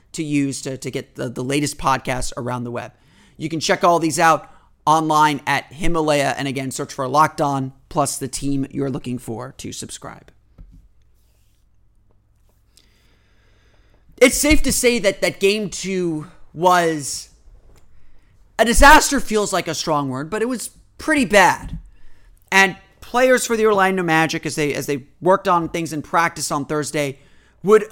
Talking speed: 155 wpm